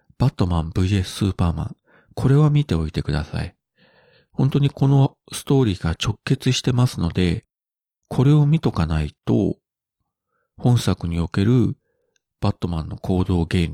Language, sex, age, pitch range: Japanese, male, 40-59, 85-130 Hz